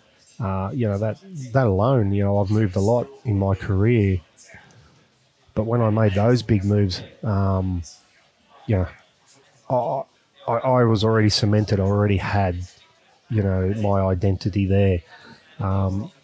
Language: English